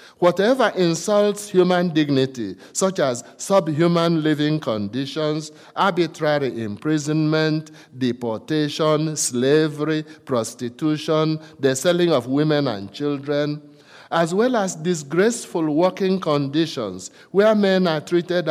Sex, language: male, English